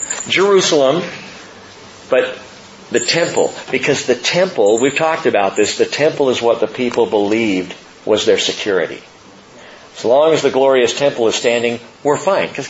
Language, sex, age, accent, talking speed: English, male, 50-69, American, 150 wpm